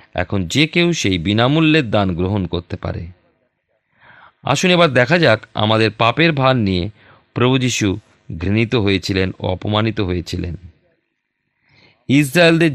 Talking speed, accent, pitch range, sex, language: 115 wpm, native, 95-140 Hz, male, Bengali